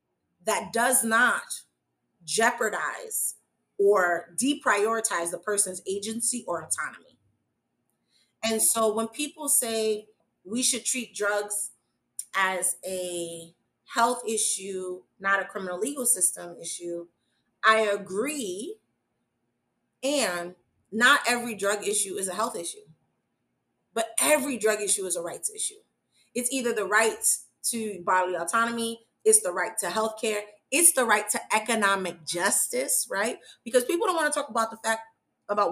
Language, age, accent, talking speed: English, 30-49, American, 135 wpm